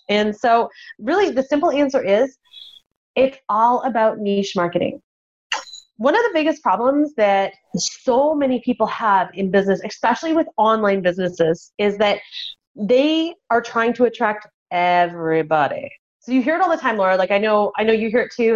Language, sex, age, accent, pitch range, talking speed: English, female, 30-49, American, 190-265 Hz, 170 wpm